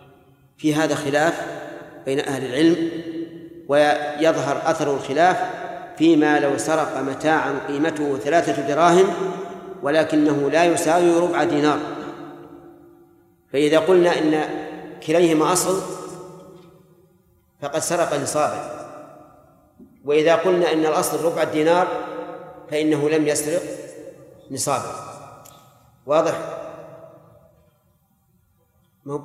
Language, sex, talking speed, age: Arabic, male, 85 wpm, 40-59